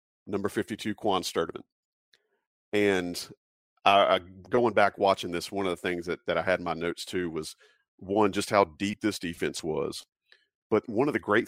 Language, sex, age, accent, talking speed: English, male, 40-59, American, 190 wpm